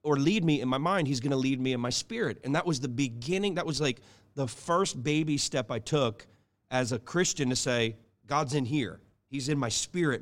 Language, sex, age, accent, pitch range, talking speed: English, male, 30-49, American, 105-135 Hz, 230 wpm